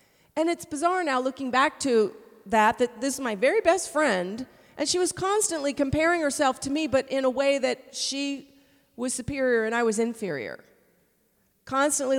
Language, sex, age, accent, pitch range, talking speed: English, female, 40-59, American, 225-295 Hz, 175 wpm